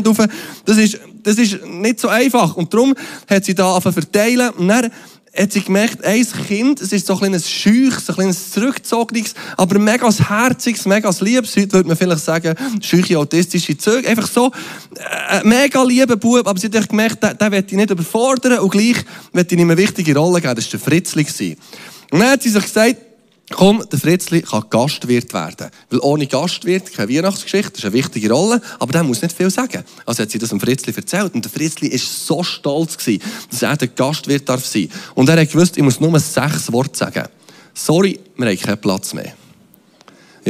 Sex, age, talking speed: male, 20-39, 205 wpm